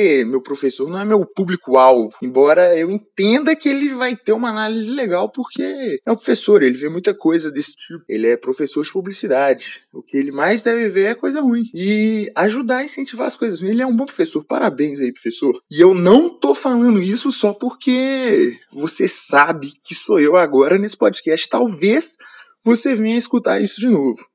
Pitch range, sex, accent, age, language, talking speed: 155-245 Hz, male, Brazilian, 20-39, Portuguese, 190 wpm